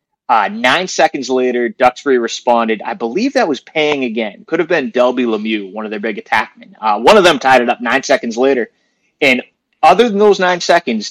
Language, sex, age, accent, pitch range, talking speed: English, male, 30-49, American, 120-165 Hz, 205 wpm